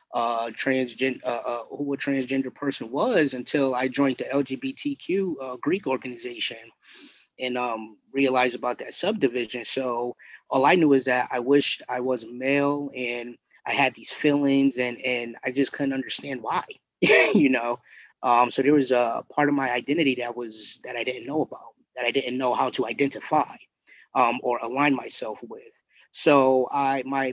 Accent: American